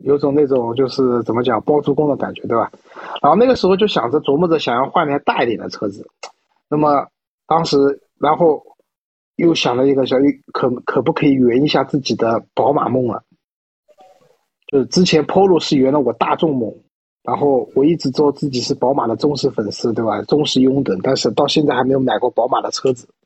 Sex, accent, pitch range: male, native, 125-150 Hz